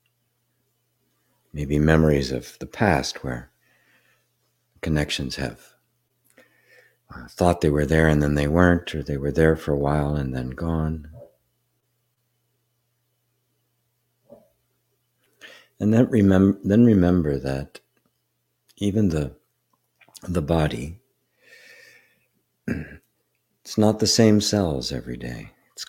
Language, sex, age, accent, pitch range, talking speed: English, male, 60-79, American, 75-120 Hz, 105 wpm